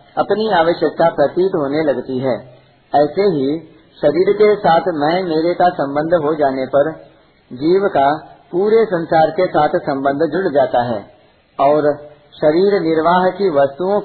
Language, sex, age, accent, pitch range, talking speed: Hindi, male, 50-69, native, 150-185 Hz, 140 wpm